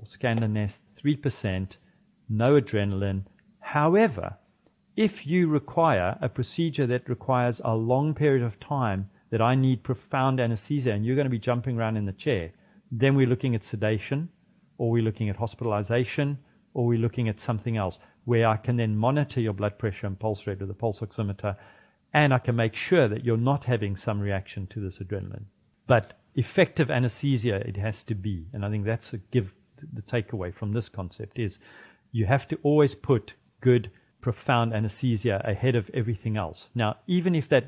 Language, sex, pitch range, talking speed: English, male, 105-130 Hz, 180 wpm